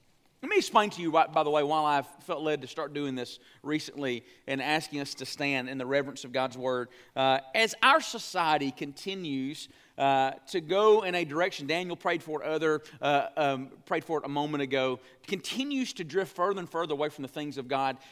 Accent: American